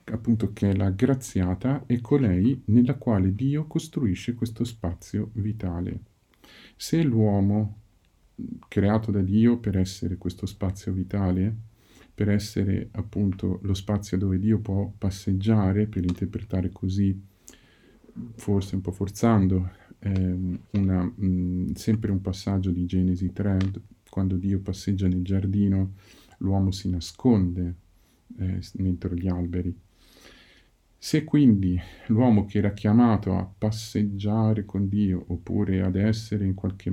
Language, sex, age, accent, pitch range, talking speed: Italian, male, 50-69, native, 95-110 Hz, 120 wpm